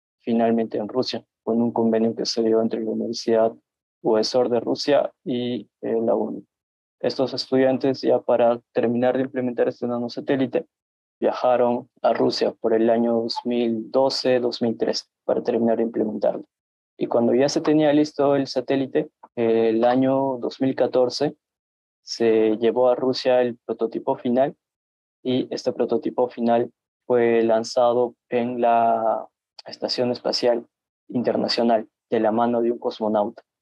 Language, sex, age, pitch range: Spanish, male, 20-39, 115-125 Hz